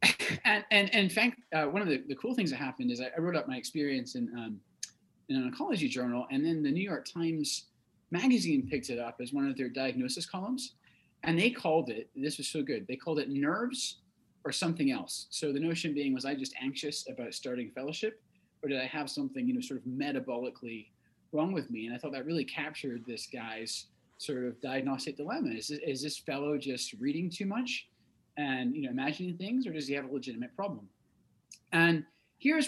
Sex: male